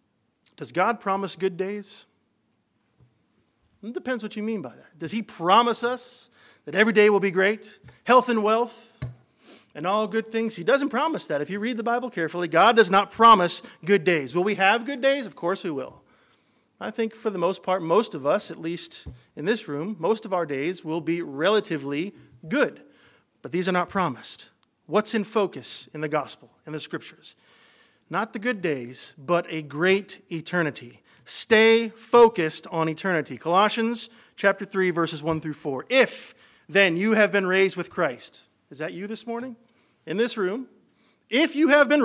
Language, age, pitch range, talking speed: English, 40-59, 170-230 Hz, 185 wpm